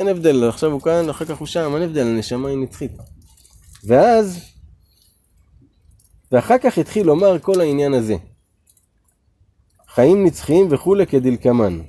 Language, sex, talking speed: Hebrew, male, 75 wpm